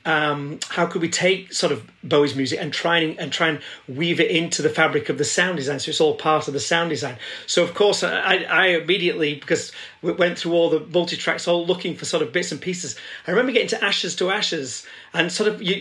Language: English